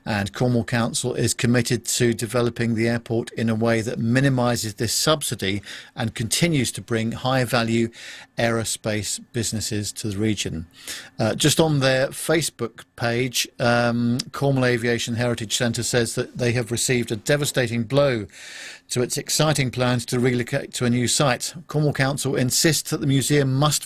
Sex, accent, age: male, British, 50-69